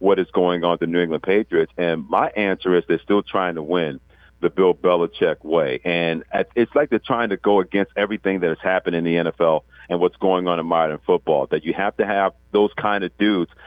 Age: 50-69